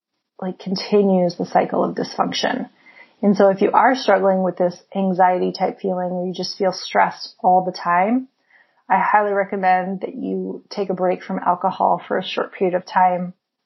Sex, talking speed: female, 180 wpm